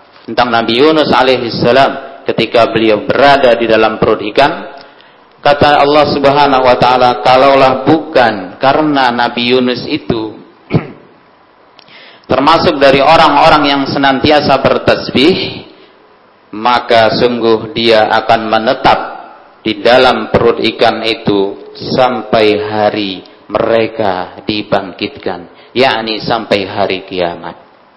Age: 50-69